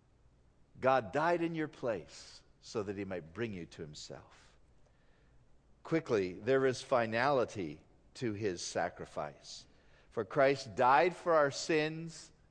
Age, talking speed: 50-69, 125 wpm